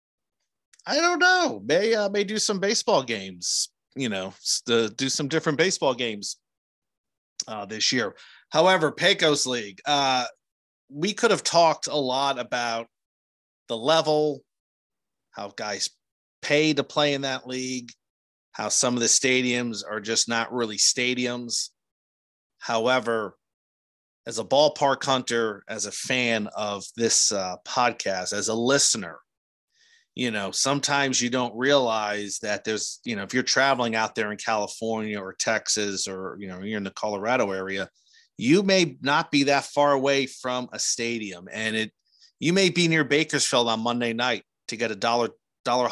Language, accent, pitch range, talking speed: English, American, 105-145 Hz, 155 wpm